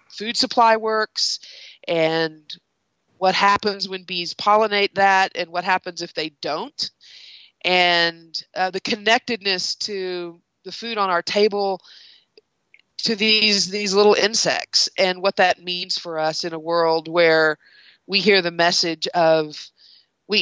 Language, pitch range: English, 175-210 Hz